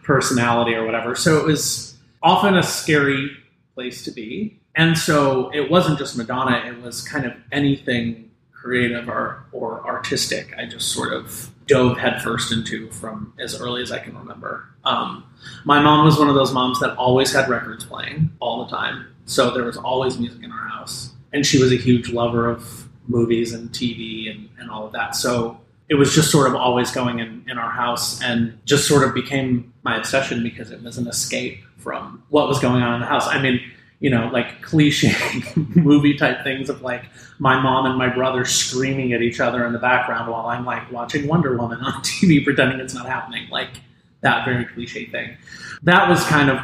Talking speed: 200 wpm